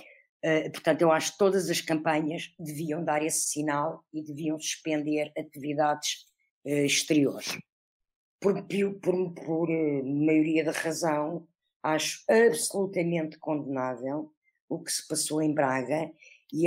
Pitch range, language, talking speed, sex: 150-175 Hz, Portuguese, 130 wpm, female